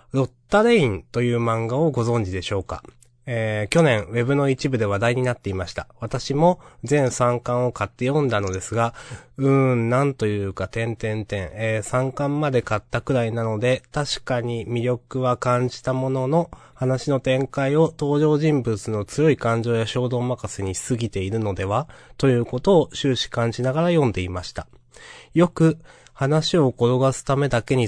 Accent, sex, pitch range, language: native, male, 110-140 Hz, Japanese